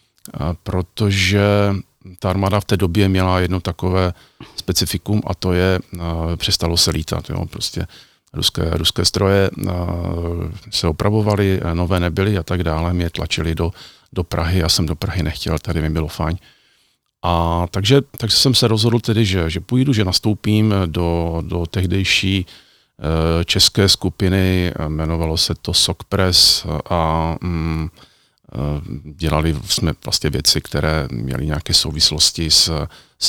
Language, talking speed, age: Czech, 135 wpm, 40-59